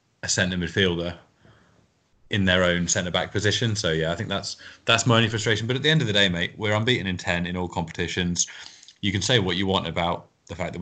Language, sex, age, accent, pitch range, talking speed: English, male, 20-39, British, 85-100 Hz, 235 wpm